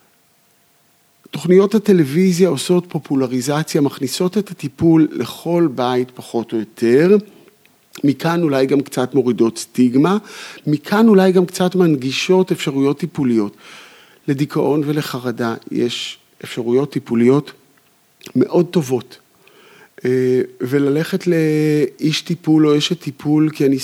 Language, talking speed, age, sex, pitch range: Hebrew, 100 wpm, 50-69, male, 120-165 Hz